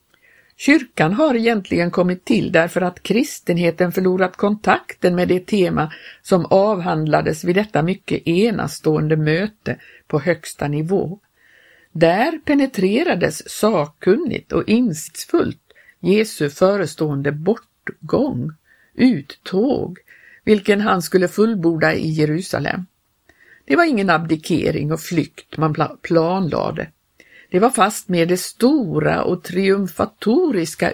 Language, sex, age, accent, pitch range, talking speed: Swedish, female, 50-69, native, 165-225 Hz, 105 wpm